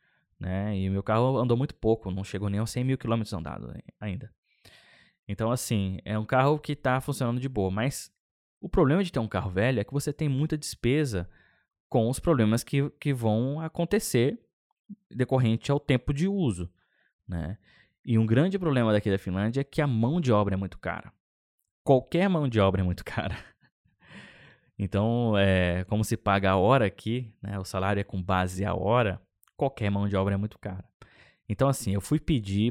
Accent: Brazilian